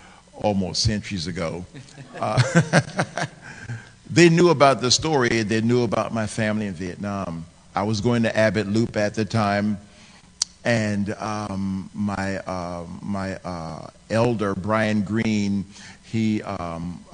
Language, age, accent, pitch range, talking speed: English, 50-69, American, 95-110 Hz, 125 wpm